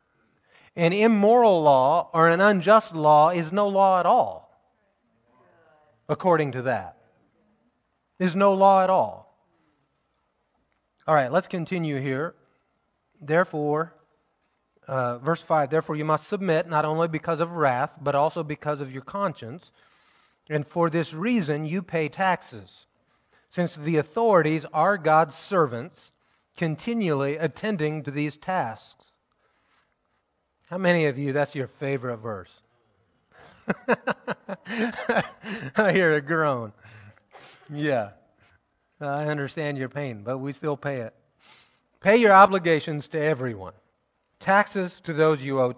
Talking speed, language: 120 wpm, English